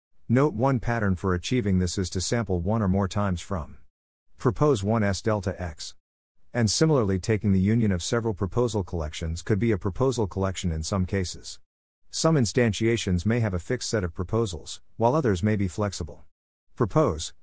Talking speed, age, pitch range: 175 wpm, 50-69, 90-115 Hz